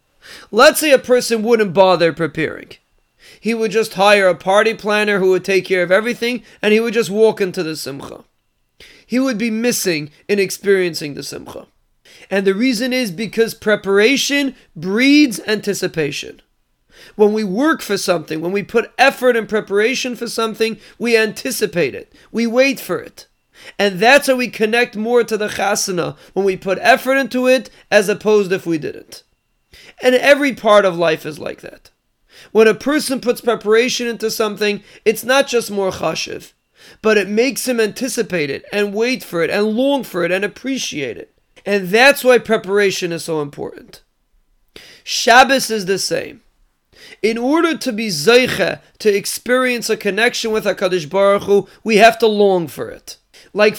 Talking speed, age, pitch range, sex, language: 170 wpm, 40-59, 195-240 Hz, male, English